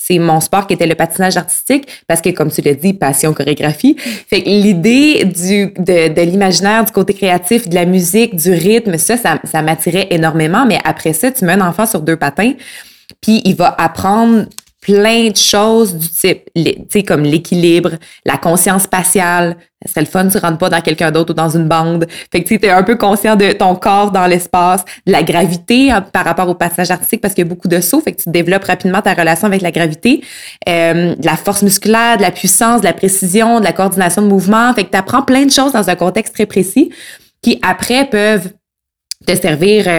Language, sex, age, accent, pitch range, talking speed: French, female, 20-39, Canadian, 170-210 Hz, 220 wpm